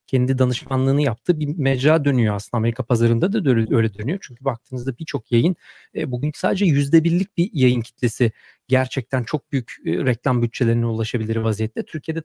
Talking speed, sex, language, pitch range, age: 165 wpm, male, Turkish, 130-160 Hz, 40-59